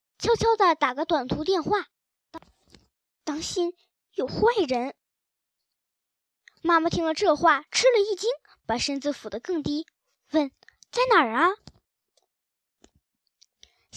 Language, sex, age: Chinese, male, 10-29